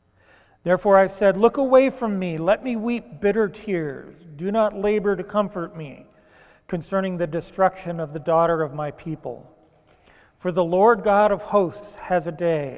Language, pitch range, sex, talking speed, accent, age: English, 155-195 Hz, male, 170 wpm, American, 40-59